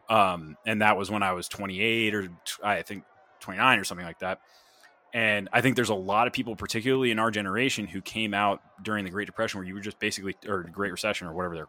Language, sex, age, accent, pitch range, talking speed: English, male, 20-39, American, 95-115 Hz, 240 wpm